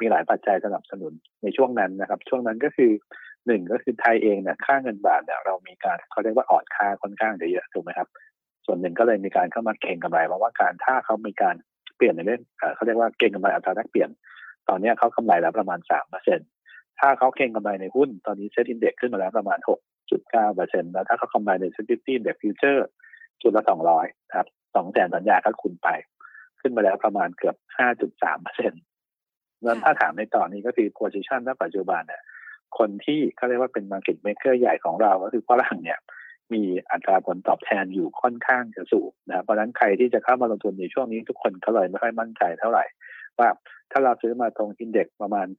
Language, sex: Thai, male